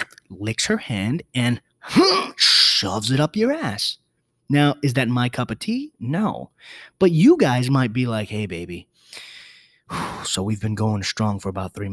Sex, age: male, 20-39